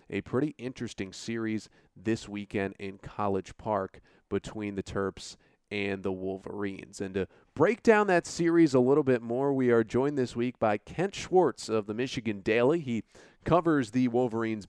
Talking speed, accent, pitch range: 170 wpm, American, 100-125 Hz